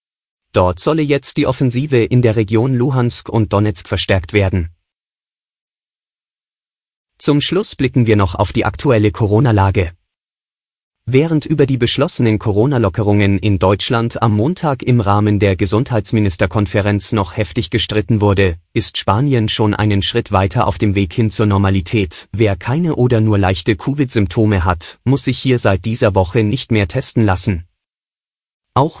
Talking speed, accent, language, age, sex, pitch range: 145 wpm, German, German, 30-49, male, 100-125 Hz